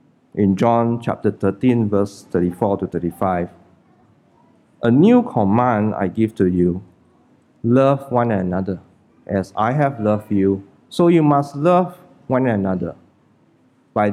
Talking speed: 125 wpm